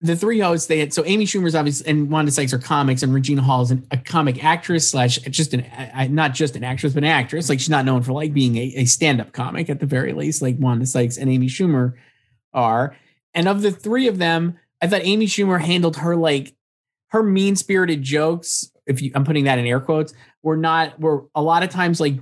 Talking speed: 230 wpm